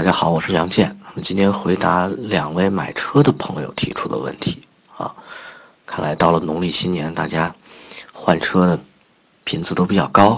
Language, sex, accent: Chinese, male, native